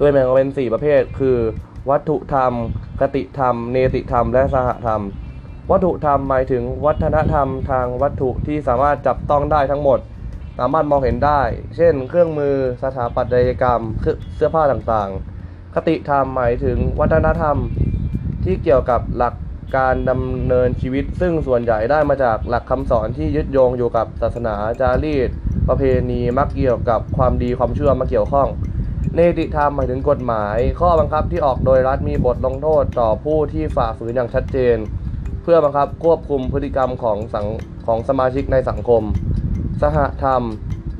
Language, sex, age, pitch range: Thai, male, 20-39, 115-140 Hz